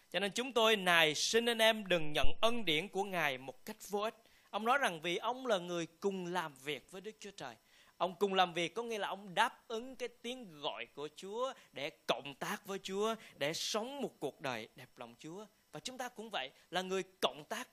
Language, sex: Vietnamese, male